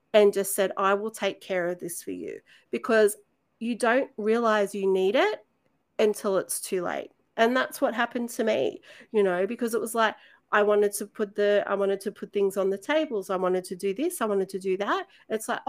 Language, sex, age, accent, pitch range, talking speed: English, female, 40-59, Australian, 190-230 Hz, 225 wpm